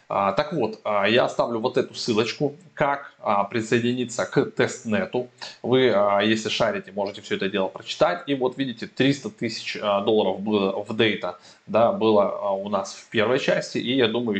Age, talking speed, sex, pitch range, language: 20-39, 155 wpm, male, 105-130 Hz, Russian